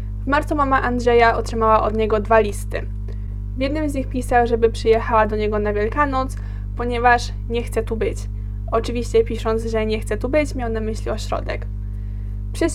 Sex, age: female, 20-39